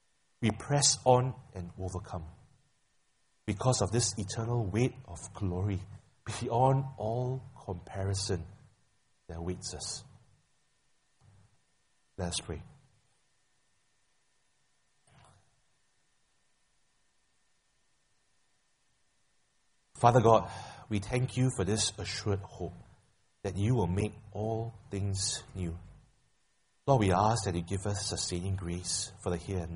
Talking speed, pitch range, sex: 100 wpm, 95-120 Hz, male